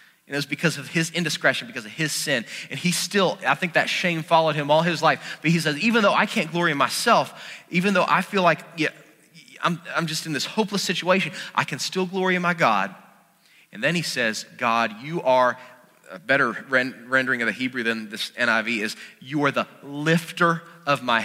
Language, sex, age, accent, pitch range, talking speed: English, male, 30-49, American, 150-175 Hz, 215 wpm